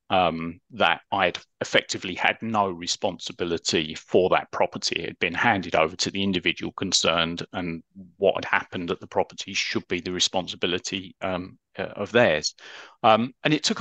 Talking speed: 160 wpm